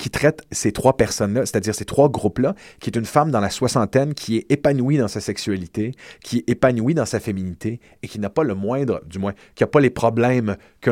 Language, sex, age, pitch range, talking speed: French, male, 30-49, 105-130 Hz, 230 wpm